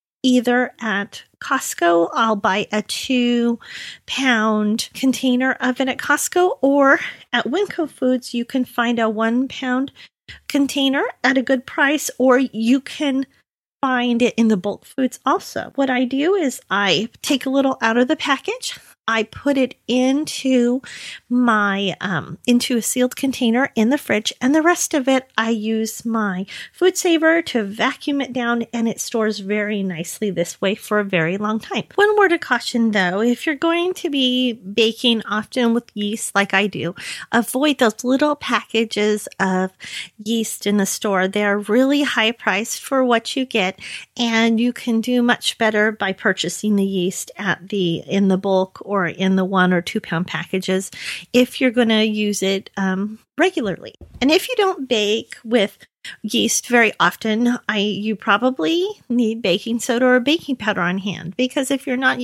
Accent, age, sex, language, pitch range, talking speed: American, 40-59, female, English, 210-265 Hz, 175 wpm